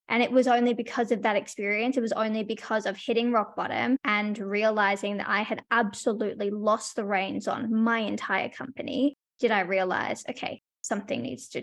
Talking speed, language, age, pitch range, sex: 185 wpm, English, 10-29, 220-270 Hz, female